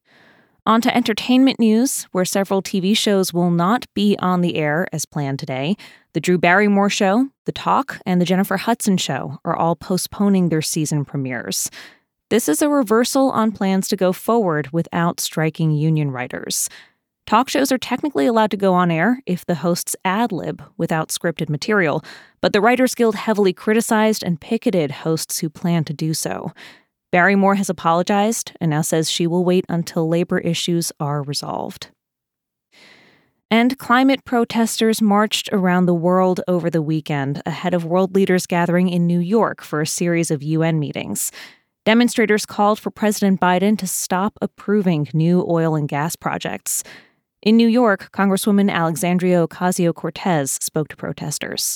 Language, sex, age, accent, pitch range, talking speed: English, female, 20-39, American, 165-210 Hz, 160 wpm